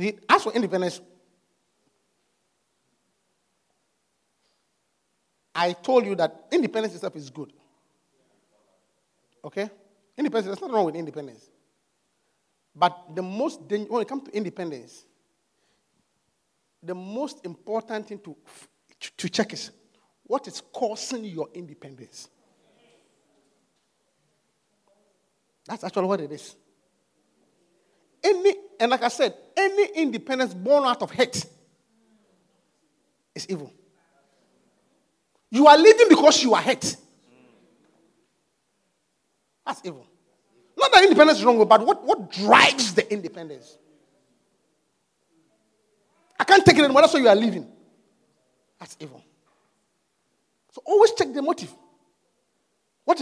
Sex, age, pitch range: male, 50-69, 185-290 Hz